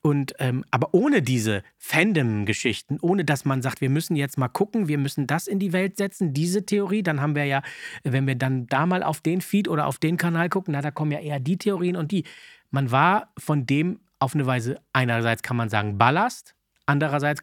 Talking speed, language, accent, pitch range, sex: 215 wpm, German, German, 130-175 Hz, male